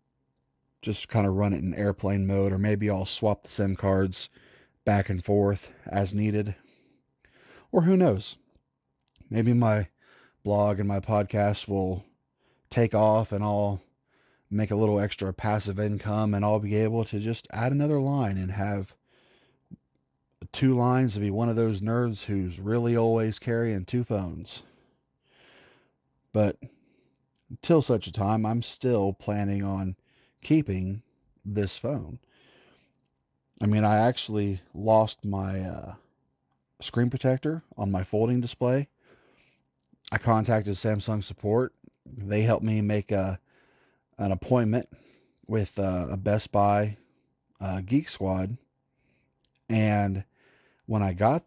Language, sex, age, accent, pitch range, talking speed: English, male, 30-49, American, 100-115 Hz, 130 wpm